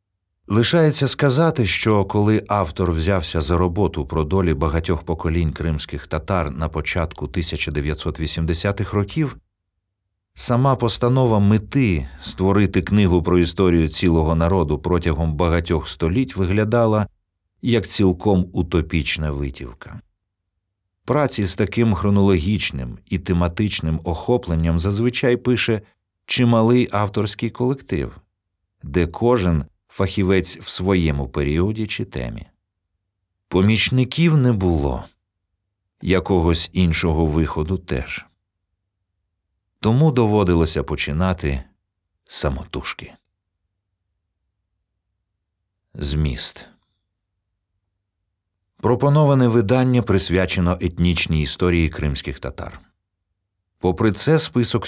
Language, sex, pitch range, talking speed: Ukrainian, male, 85-105 Hz, 85 wpm